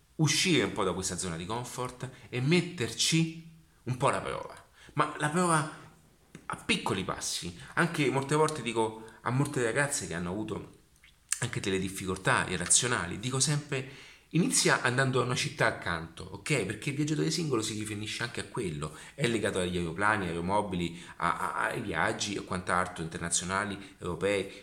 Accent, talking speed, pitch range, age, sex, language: native, 160 wpm, 105-155 Hz, 30-49, male, Italian